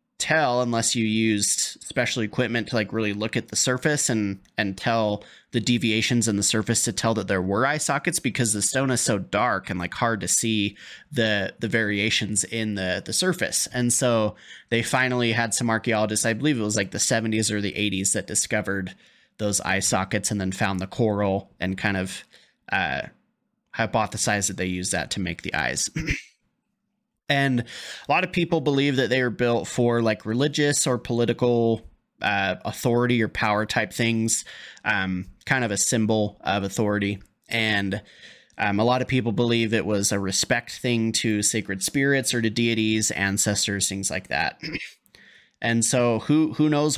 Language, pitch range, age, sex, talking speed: English, 105-125 Hz, 20-39, male, 180 wpm